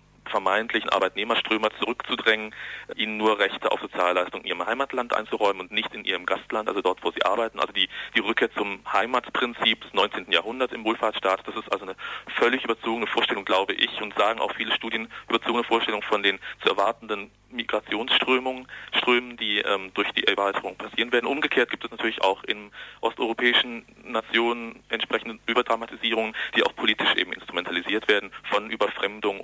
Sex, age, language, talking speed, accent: male, 40-59, German, 160 wpm, German